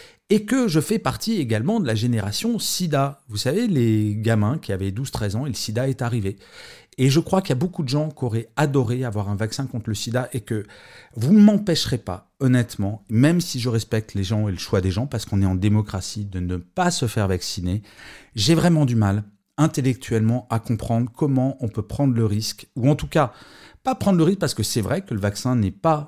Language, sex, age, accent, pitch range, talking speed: French, male, 40-59, French, 100-130 Hz, 230 wpm